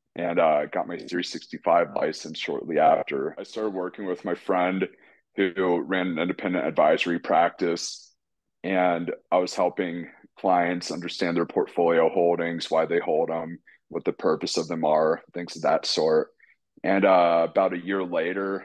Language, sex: English, male